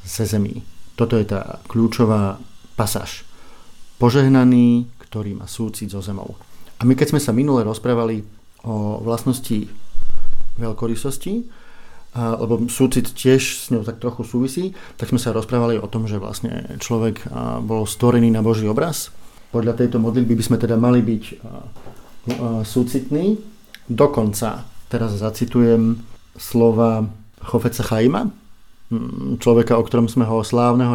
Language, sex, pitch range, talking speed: Slovak, male, 105-120 Hz, 130 wpm